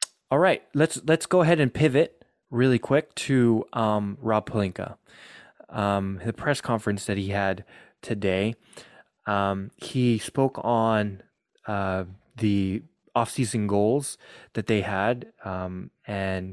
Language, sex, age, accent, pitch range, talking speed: English, male, 20-39, American, 100-120 Hz, 130 wpm